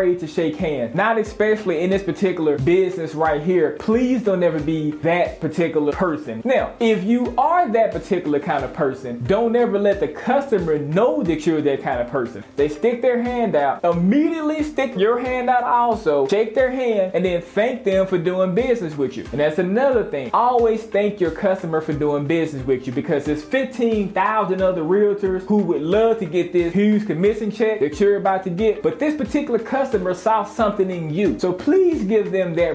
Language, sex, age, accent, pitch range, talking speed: English, male, 20-39, American, 165-225 Hz, 195 wpm